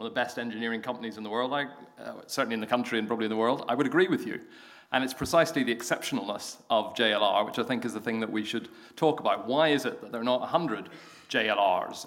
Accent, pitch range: British, 115-150 Hz